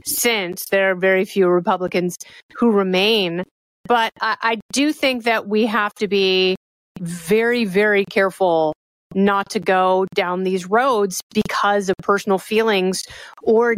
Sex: female